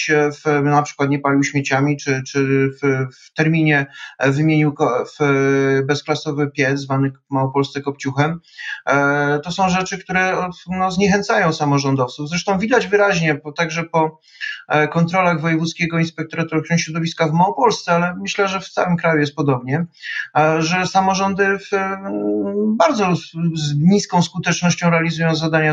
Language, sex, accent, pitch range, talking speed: Polish, male, native, 150-175 Hz, 140 wpm